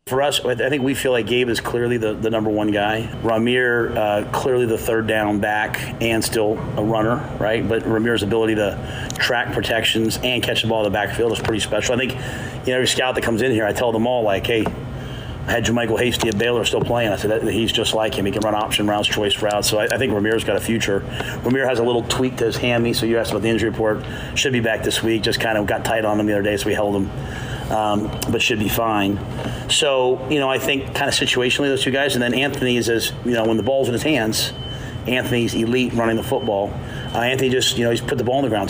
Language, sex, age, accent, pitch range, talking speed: English, male, 30-49, American, 110-125 Hz, 260 wpm